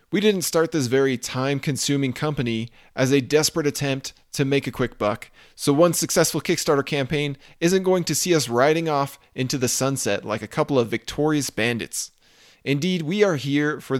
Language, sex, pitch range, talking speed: English, male, 125-160 Hz, 180 wpm